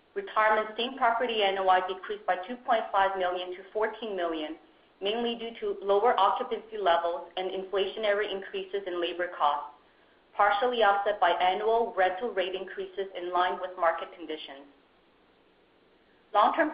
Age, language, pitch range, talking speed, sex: 30-49, English, 180-225 Hz, 130 wpm, female